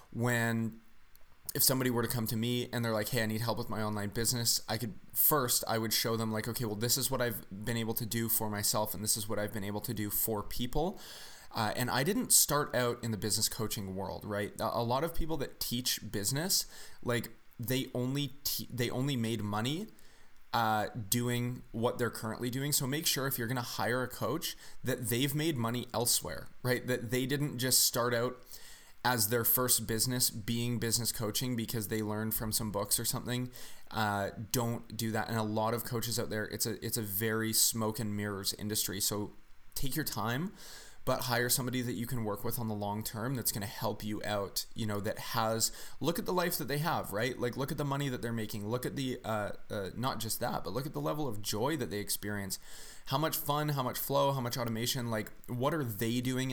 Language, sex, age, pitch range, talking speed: English, male, 20-39, 110-125 Hz, 225 wpm